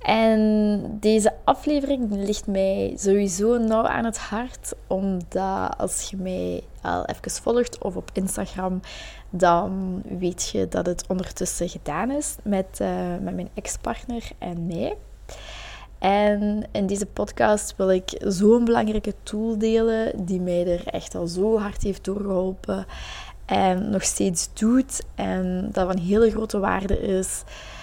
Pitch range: 185-215 Hz